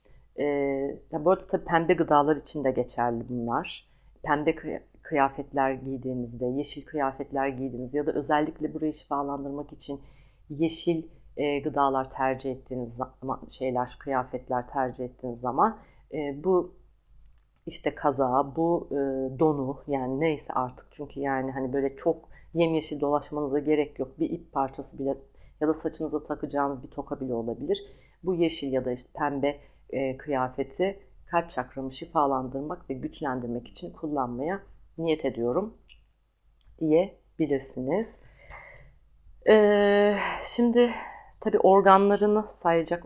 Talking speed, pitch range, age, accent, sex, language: 125 wpm, 130-160 Hz, 40-59, native, female, Turkish